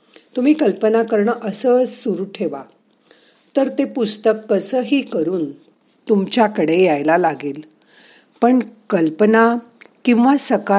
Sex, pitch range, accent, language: female, 180-235 Hz, native, Marathi